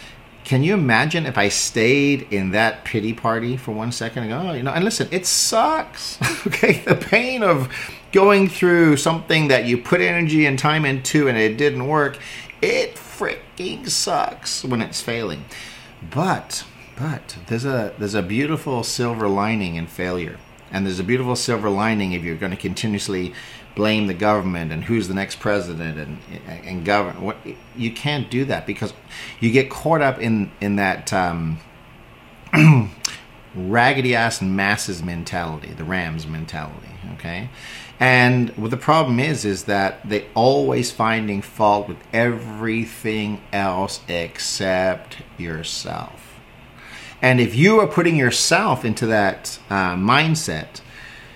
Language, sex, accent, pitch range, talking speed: English, male, American, 100-135 Hz, 145 wpm